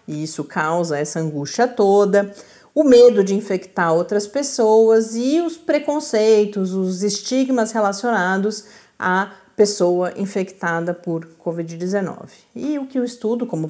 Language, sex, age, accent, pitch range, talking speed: Portuguese, female, 40-59, Brazilian, 180-235 Hz, 125 wpm